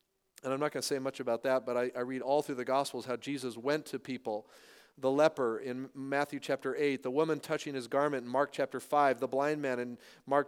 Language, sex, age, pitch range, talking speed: English, male, 40-59, 130-165 Hz, 240 wpm